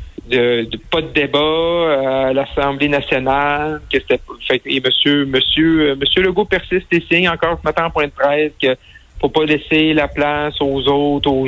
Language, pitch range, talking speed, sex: French, 125-140 Hz, 190 wpm, male